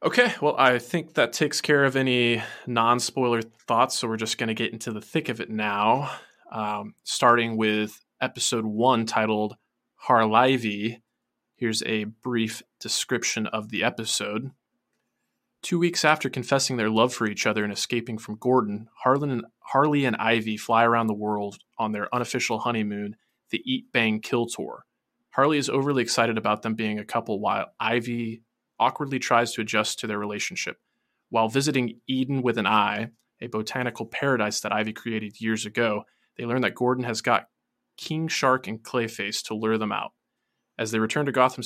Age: 20-39